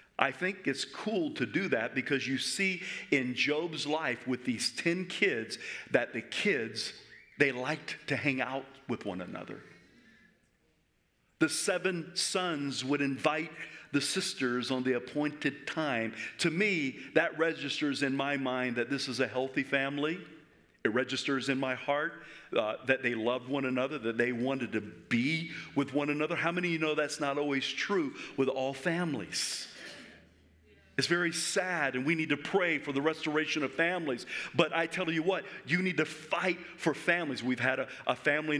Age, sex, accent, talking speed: 50-69, male, American, 175 wpm